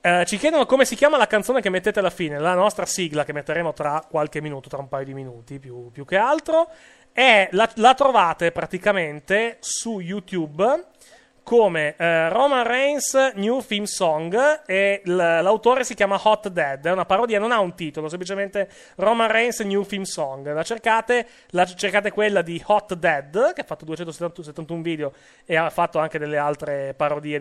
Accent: native